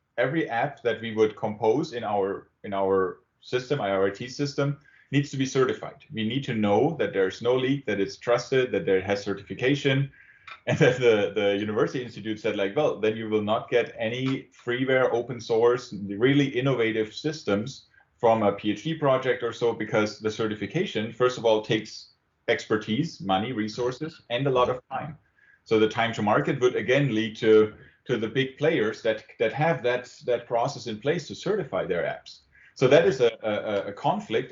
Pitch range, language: 105-130 Hz, English